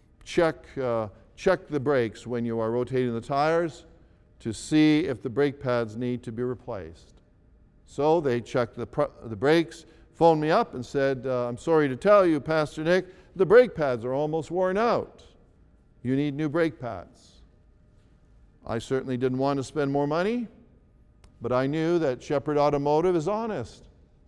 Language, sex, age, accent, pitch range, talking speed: English, male, 50-69, American, 120-160 Hz, 170 wpm